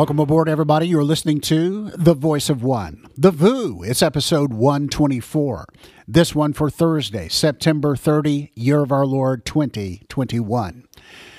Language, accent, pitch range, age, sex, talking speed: English, American, 130-160 Hz, 50-69, male, 135 wpm